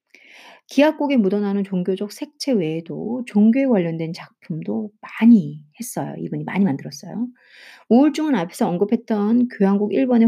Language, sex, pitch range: Korean, female, 185-255 Hz